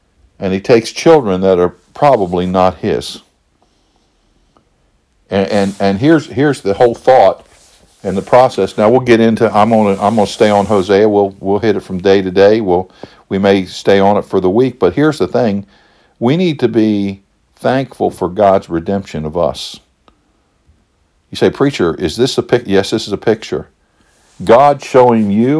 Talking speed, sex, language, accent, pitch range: 180 wpm, male, English, American, 80-105 Hz